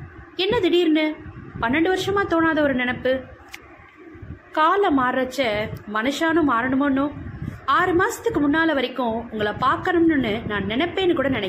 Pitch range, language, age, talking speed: 250-345 Hz, Tamil, 20-39, 100 wpm